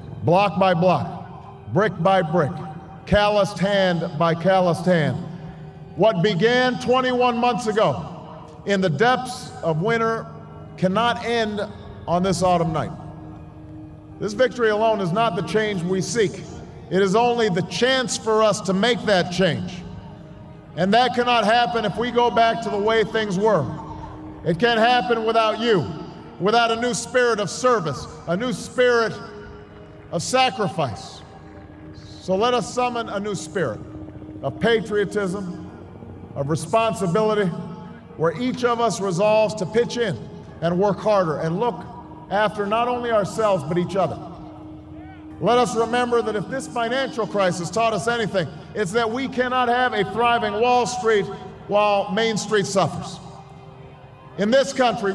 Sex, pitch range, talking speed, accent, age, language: male, 165-230 Hz, 145 wpm, American, 50-69, English